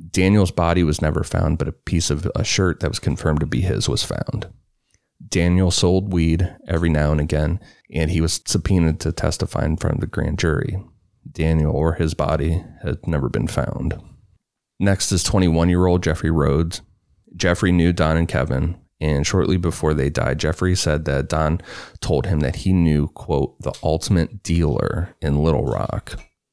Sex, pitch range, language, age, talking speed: male, 75-90 Hz, English, 30-49, 175 wpm